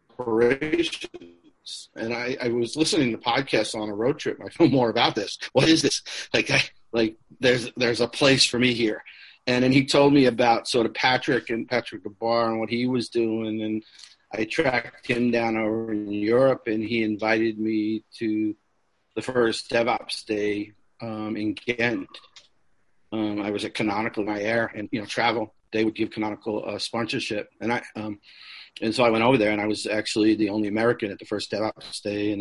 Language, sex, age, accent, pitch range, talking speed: English, male, 50-69, American, 105-130 Hz, 195 wpm